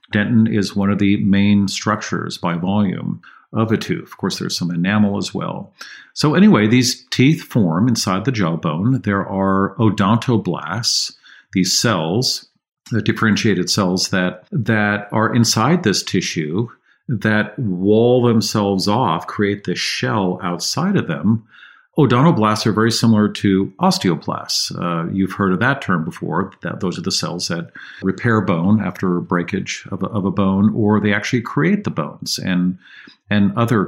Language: English